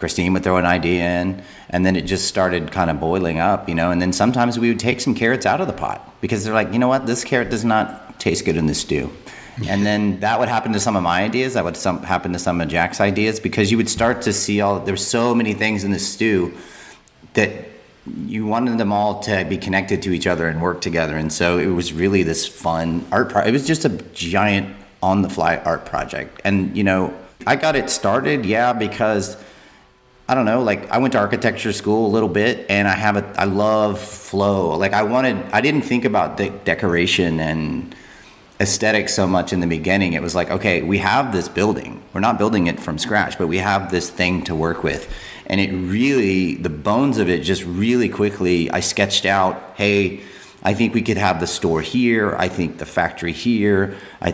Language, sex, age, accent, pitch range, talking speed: English, male, 30-49, American, 90-105 Hz, 225 wpm